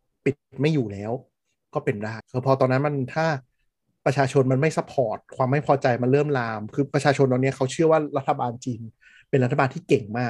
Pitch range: 120-140 Hz